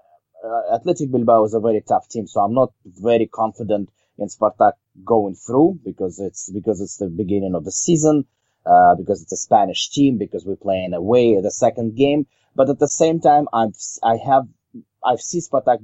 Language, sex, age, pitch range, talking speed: English, male, 30-49, 100-125 Hz, 190 wpm